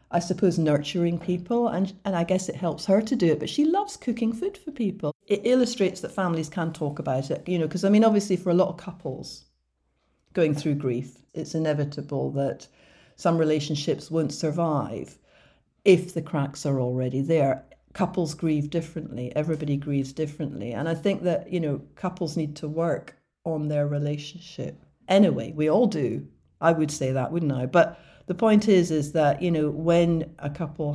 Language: English